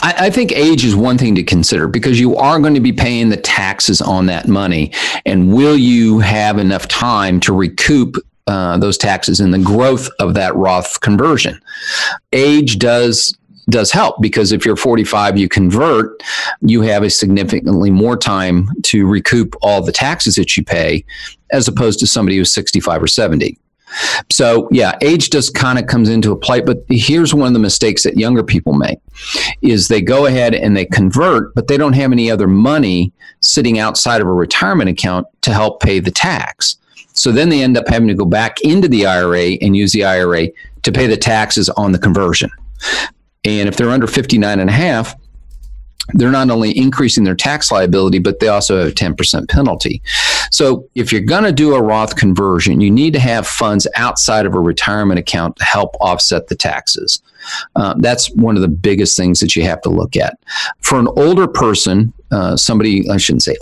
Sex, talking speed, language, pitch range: male, 195 wpm, English, 95-120 Hz